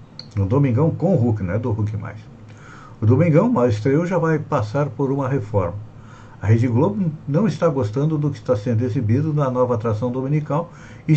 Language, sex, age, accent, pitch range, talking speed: Portuguese, male, 60-79, Brazilian, 110-150 Hz, 195 wpm